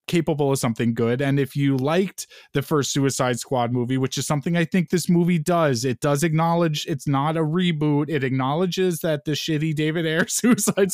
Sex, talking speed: male, 195 wpm